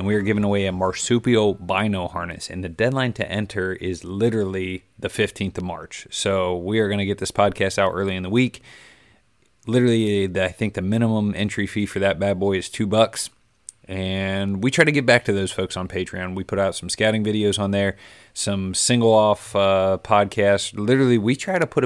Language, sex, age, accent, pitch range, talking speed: English, male, 30-49, American, 95-110 Hz, 210 wpm